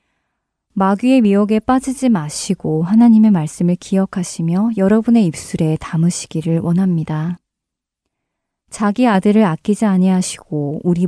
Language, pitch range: Korean, 170-220 Hz